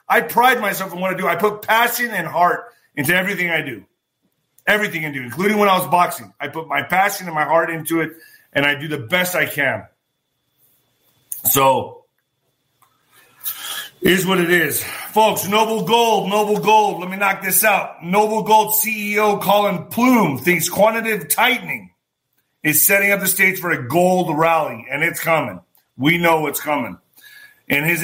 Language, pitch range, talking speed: English, 155-200 Hz, 175 wpm